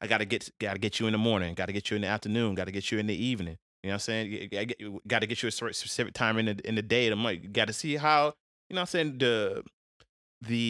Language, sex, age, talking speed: English, male, 30-49, 310 wpm